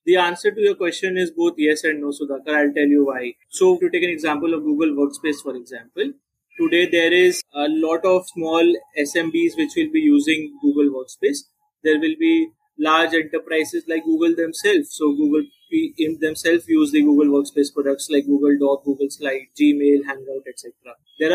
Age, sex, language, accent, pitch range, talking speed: 30-49, male, English, Indian, 150-200 Hz, 185 wpm